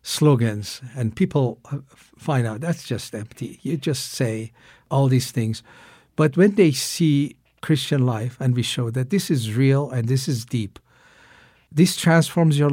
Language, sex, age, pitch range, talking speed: English, male, 60-79, 120-165 Hz, 160 wpm